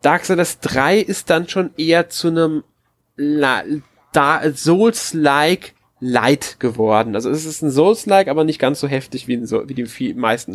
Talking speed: 150 wpm